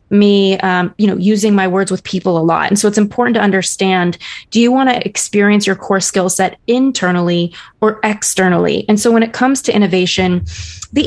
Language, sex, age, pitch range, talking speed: English, female, 20-39, 185-215 Hz, 200 wpm